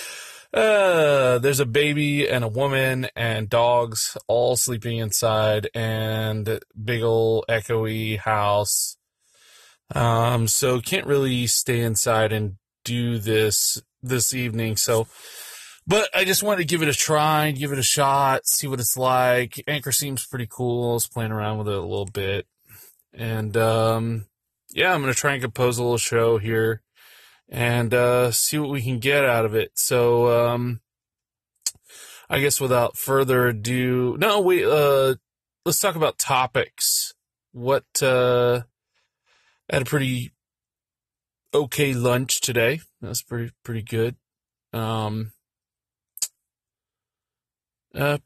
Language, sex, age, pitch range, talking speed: English, male, 20-39, 115-135 Hz, 140 wpm